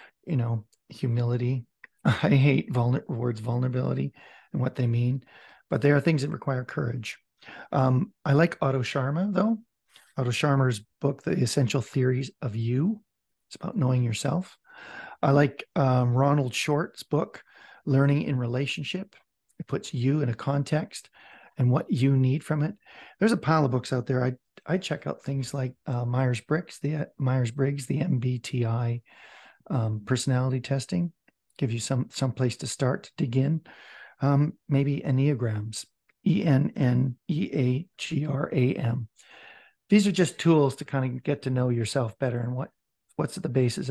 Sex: male